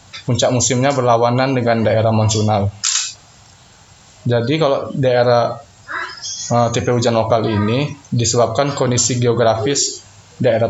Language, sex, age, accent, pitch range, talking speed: Indonesian, male, 20-39, native, 110-130 Hz, 100 wpm